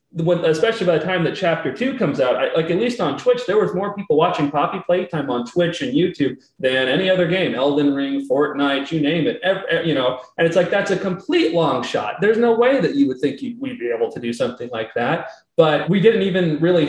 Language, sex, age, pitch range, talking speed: English, male, 30-49, 145-185 Hz, 230 wpm